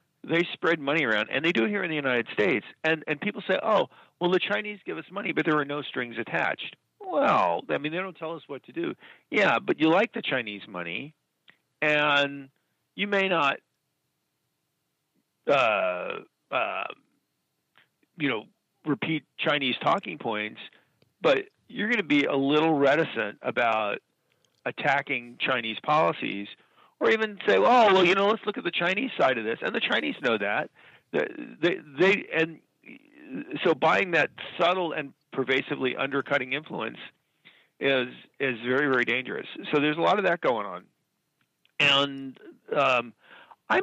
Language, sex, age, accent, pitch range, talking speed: English, male, 50-69, American, 135-190 Hz, 160 wpm